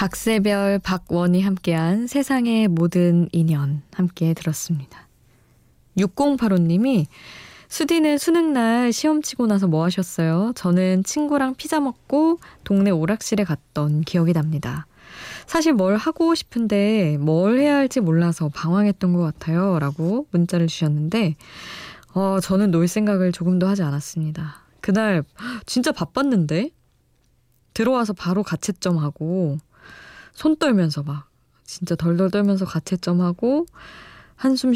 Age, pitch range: 20-39, 165-225 Hz